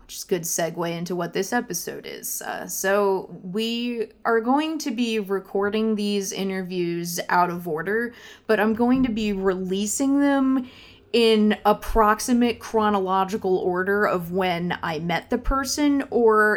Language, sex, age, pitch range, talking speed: English, female, 20-39, 175-215 Hz, 140 wpm